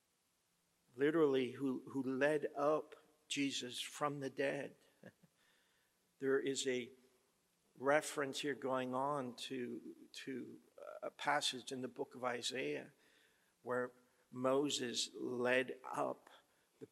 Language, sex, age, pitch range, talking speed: English, male, 60-79, 130-150 Hz, 105 wpm